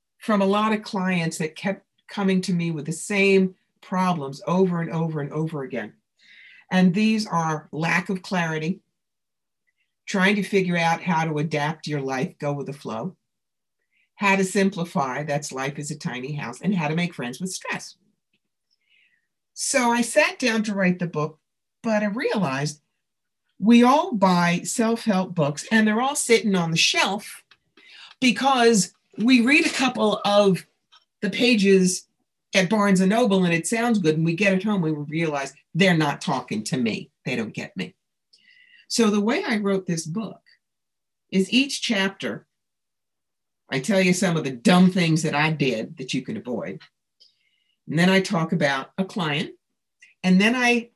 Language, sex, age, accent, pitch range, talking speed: English, female, 50-69, American, 165-215 Hz, 170 wpm